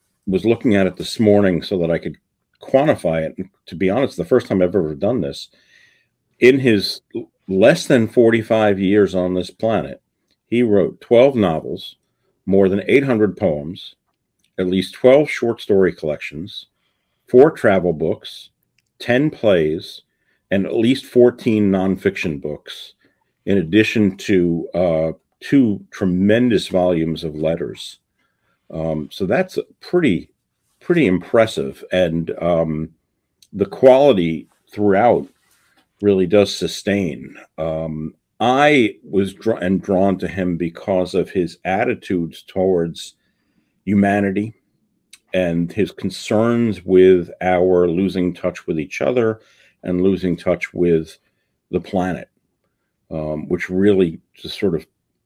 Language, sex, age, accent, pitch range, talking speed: English, male, 50-69, American, 85-100 Hz, 125 wpm